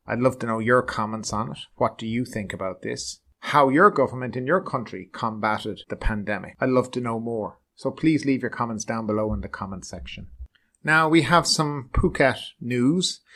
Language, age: English, 30-49